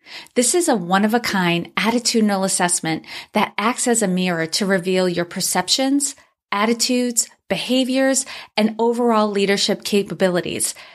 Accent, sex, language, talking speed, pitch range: American, female, English, 120 wpm, 185-235 Hz